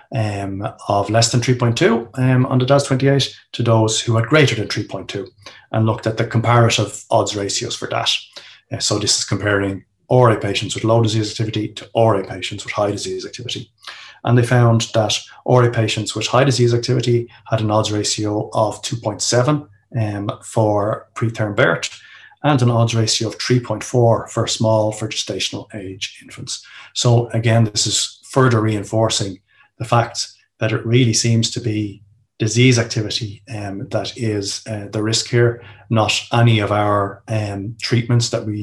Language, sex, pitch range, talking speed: English, male, 105-120 Hz, 165 wpm